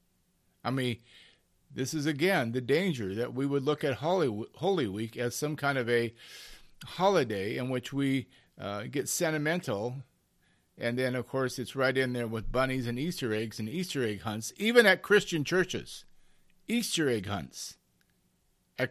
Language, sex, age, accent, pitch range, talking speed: English, male, 50-69, American, 115-155 Hz, 160 wpm